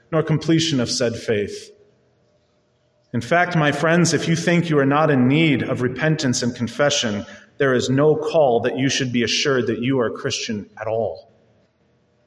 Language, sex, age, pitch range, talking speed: English, male, 30-49, 145-195 Hz, 180 wpm